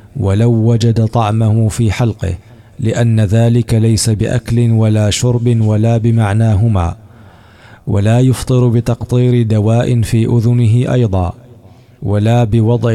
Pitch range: 105-115 Hz